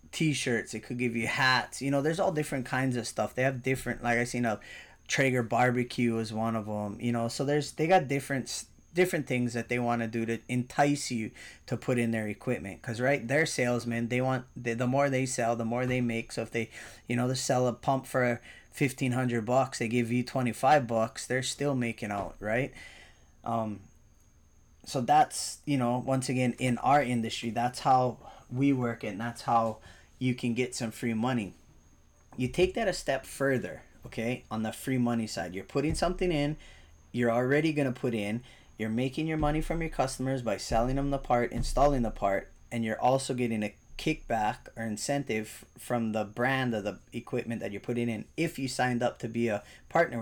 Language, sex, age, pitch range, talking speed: English, male, 20-39, 115-135 Hz, 205 wpm